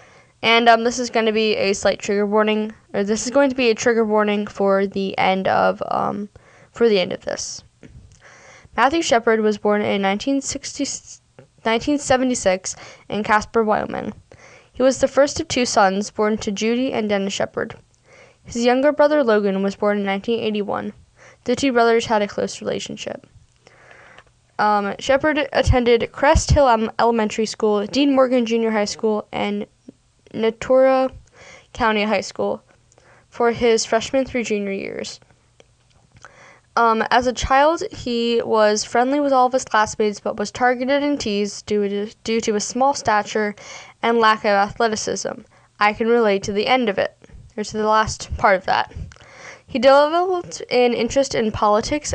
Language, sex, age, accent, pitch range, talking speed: English, female, 10-29, American, 205-250 Hz, 160 wpm